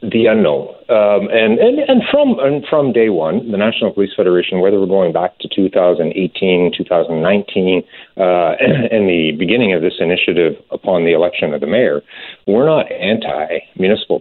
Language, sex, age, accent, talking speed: English, male, 50-69, American, 165 wpm